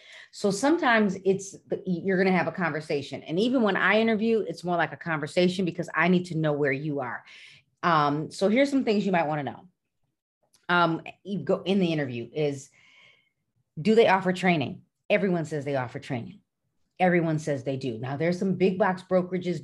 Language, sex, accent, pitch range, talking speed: English, female, American, 150-195 Hz, 185 wpm